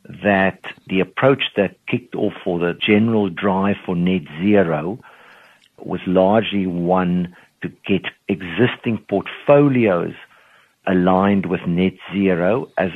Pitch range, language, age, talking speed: 90-100 Hz, English, 50-69, 115 wpm